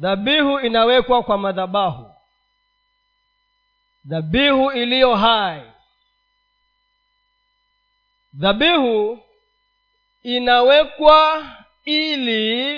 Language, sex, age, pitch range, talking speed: Swahili, male, 40-59, 230-315 Hz, 45 wpm